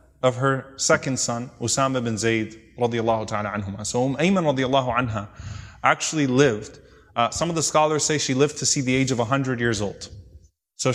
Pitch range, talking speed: 110-140 Hz, 185 wpm